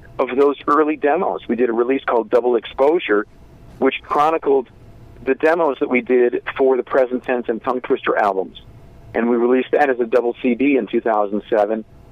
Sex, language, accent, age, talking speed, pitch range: male, English, American, 50-69, 180 wpm, 120-140 Hz